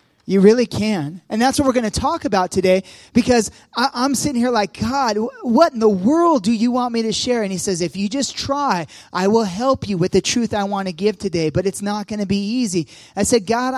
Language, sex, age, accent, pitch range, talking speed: English, male, 30-49, American, 175-220 Hz, 250 wpm